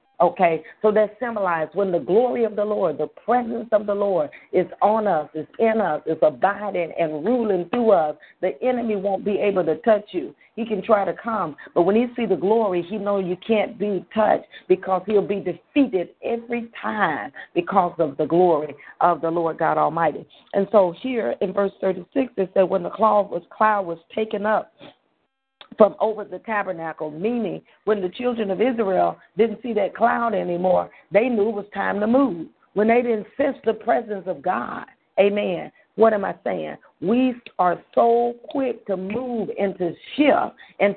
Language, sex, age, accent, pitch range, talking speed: English, female, 40-59, American, 185-230 Hz, 185 wpm